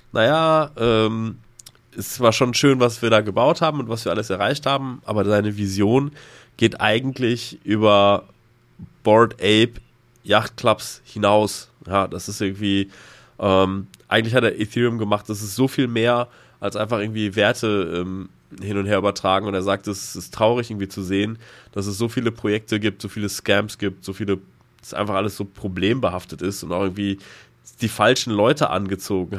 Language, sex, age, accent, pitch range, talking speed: German, male, 20-39, German, 100-135 Hz, 175 wpm